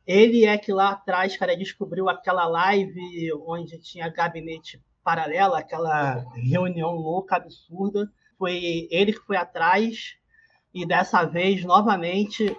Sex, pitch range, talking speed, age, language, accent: male, 165-200 Hz, 125 wpm, 20-39, Portuguese, Brazilian